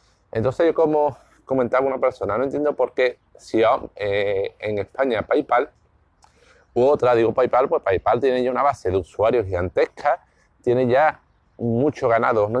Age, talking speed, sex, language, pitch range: 30-49, 155 wpm, male, Spanish, 105-145 Hz